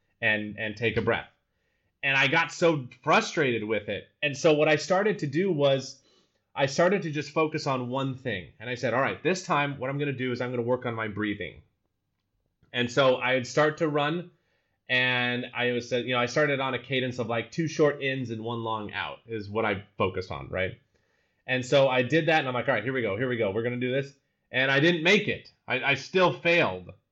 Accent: American